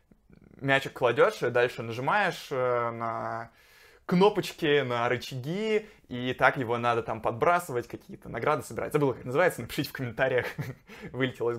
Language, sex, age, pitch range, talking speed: Russian, male, 20-39, 125-165 Hz, 135 wpm